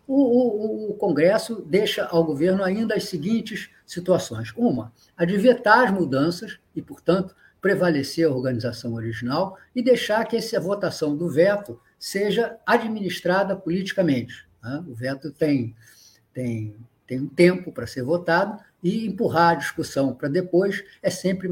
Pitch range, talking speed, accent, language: 140-195 Hz, 140 wpm, Brazilian, Portuguese